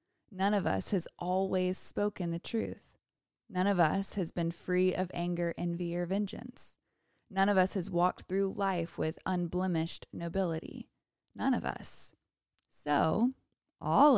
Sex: female